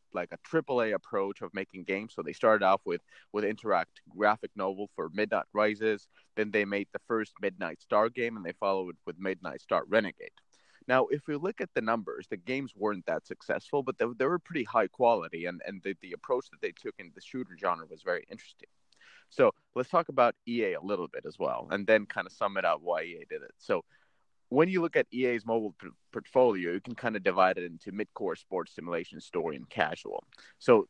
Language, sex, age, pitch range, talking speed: English, male, 30-49, 100-170 Hz, 220 wpm